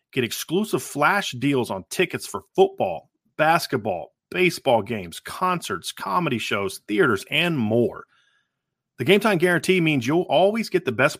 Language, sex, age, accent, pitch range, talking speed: English, male, 30-49, American, 130-190 Hz, 145 wpm